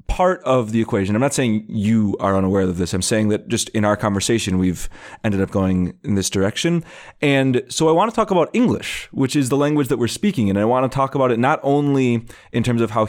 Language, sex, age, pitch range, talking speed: English, male, 30-49, 105-130 Hz, 250 wpm